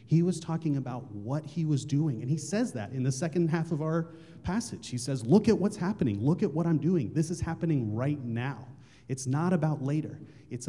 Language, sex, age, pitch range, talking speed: English, male, 30-49, 125-170 Hz, 225 wpm